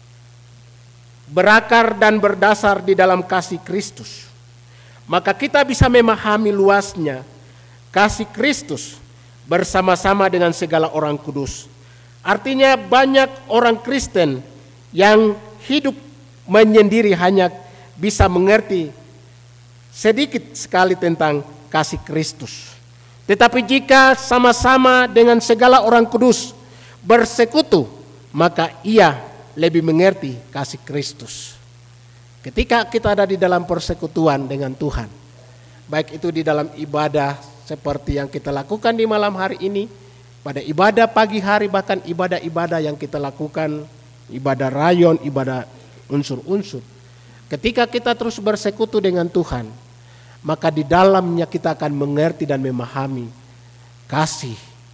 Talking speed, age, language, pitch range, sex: 105 wpm, 50-69, Malay, 125-205 Hz, male